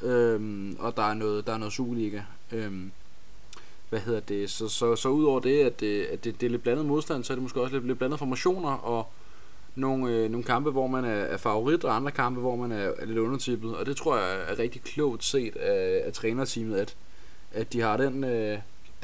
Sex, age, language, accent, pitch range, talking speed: male, 20-39, Danish, native, 105-130 Hz, 230 wpm